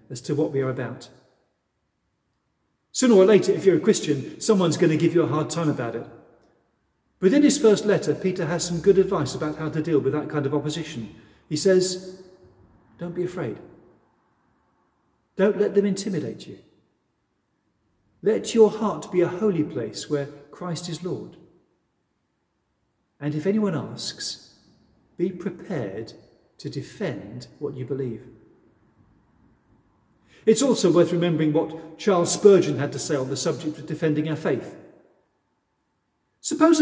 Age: 40-59